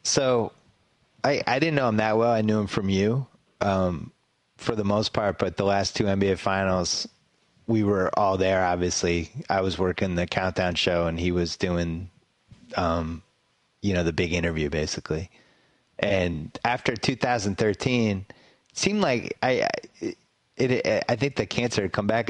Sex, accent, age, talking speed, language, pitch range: male, American, 30-49, 160 wpm, English, 90-110 Hz